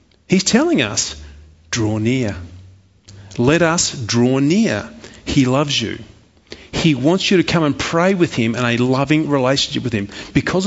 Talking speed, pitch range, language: 155 wpm, 130-190 Hz, English